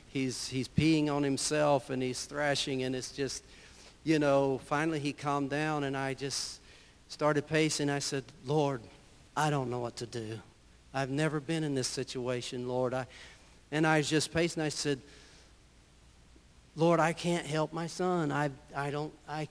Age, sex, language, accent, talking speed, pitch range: 60-79, male, English, American, 165 wpm, 130-155 Hz